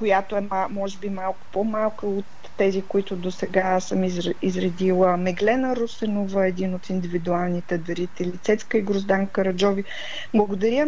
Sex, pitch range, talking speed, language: female, 195-245 Hz, 130 wpm, Bulgarian